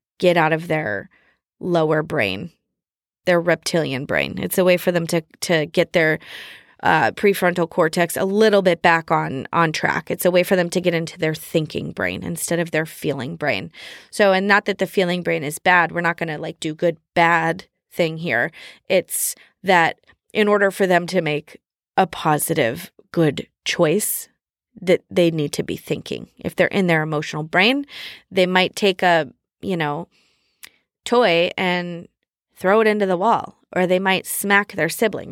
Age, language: 20-39, English